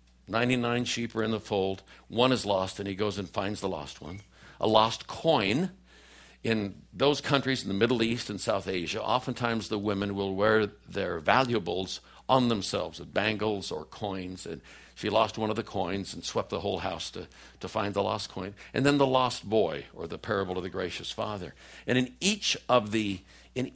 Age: 60-79